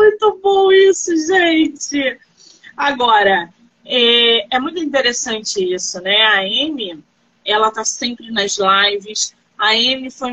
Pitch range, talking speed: 235-330 Hz, 120 wpm